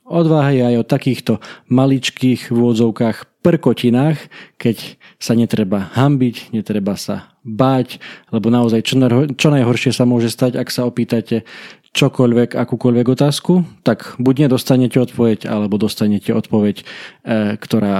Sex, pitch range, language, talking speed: male, 110-130 Hz, Slovak, 120 wpm